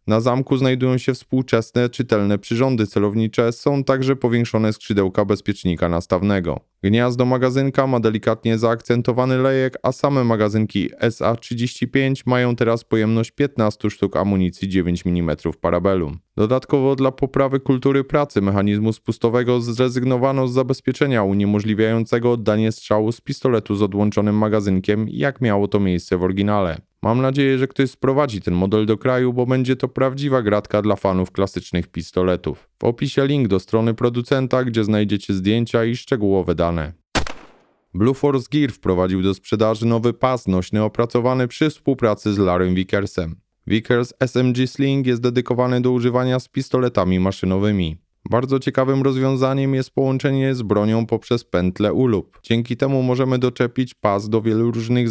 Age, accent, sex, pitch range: 20-39, native, male, 105-130 Hz